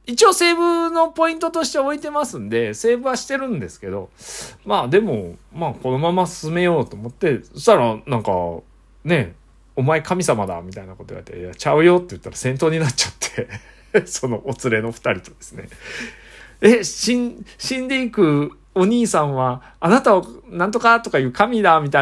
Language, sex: Japanese, male